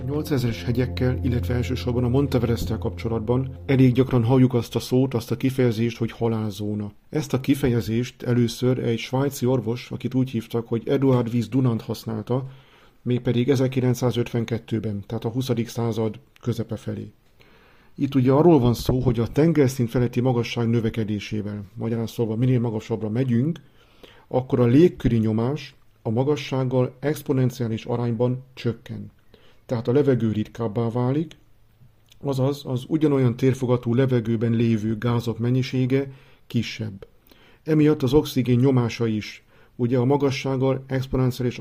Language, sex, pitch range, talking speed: Hungarian, male, 115-130 Hz, 130 wpm